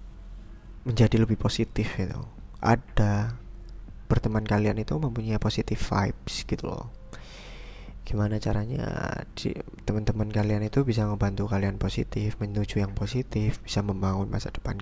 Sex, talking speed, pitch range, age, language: male, 115 wpm, 100-115 Hz, 20-39, Indonesian